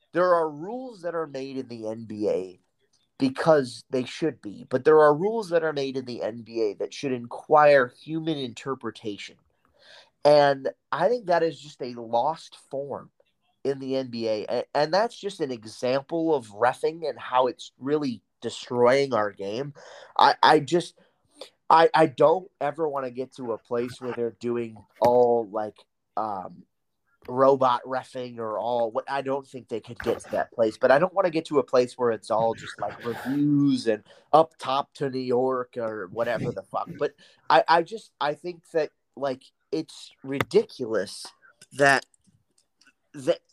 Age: 30-49